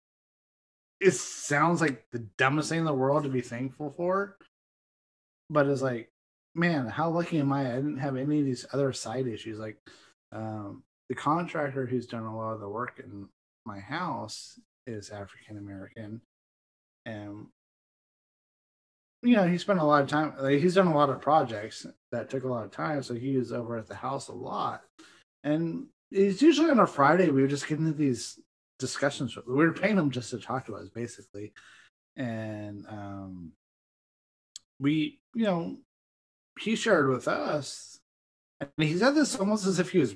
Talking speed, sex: 175 wpm, male